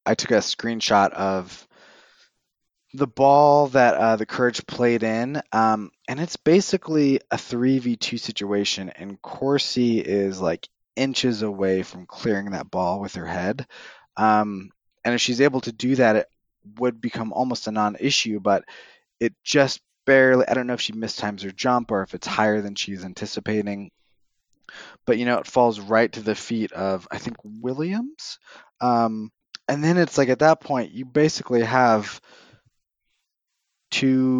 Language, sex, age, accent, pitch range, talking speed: English, male, 20-39, American, 100-130 Hz, 160 wpm